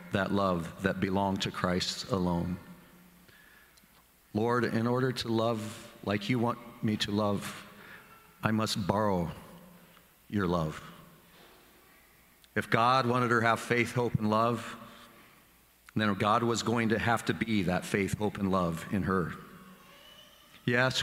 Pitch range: 95-120 Hz